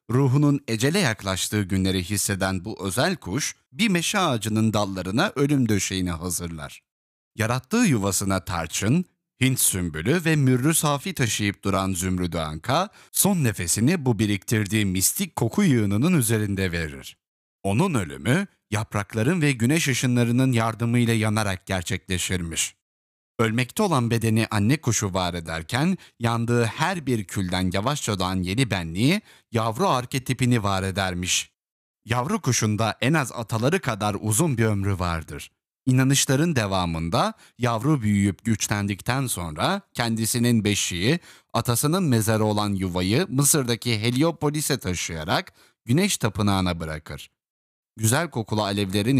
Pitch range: 95-130 Hz